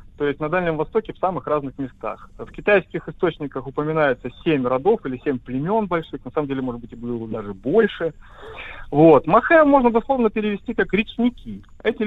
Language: Russian